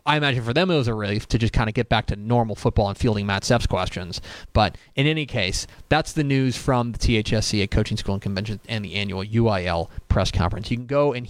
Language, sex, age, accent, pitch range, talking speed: English, male, 30-49, American, 110-155 Hz, 245 wpm